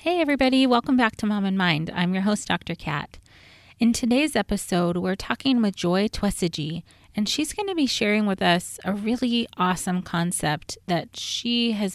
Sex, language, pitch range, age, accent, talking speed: female, English, 165-210 Hz, 30-49, American, 175 wpm